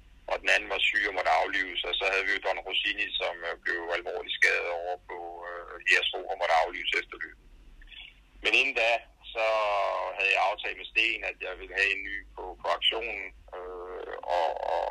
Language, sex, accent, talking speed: Danish, male, native, 190 wpm